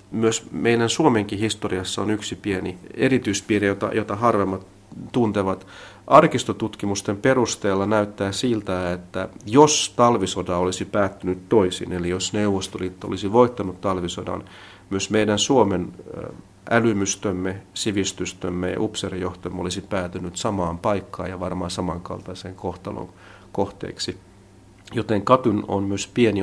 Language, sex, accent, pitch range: Finnish, male, native, 90-105 Hz